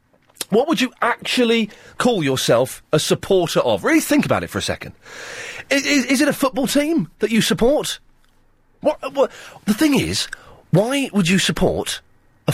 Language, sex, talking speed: English, male, 170 wpm